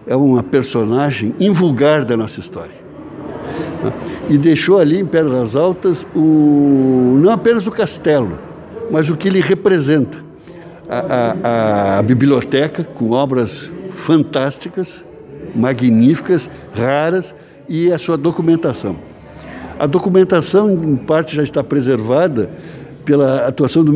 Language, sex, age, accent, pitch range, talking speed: Portuguese, male, 60-79, Brazilian, 130-180 Hz, 115 wpm